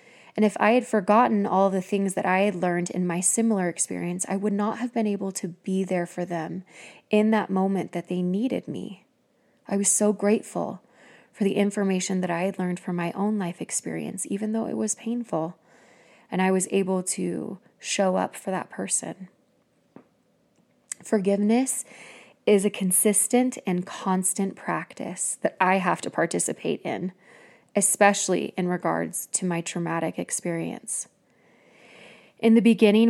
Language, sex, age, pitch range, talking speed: English, female, 20-39, 185-220 Hz, 160 wpm